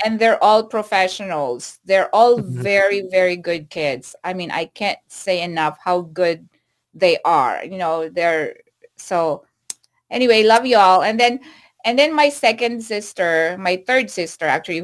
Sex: female